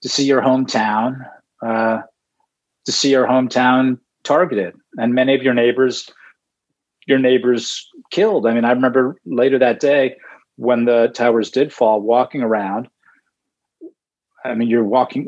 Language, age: Hebrew, 40-59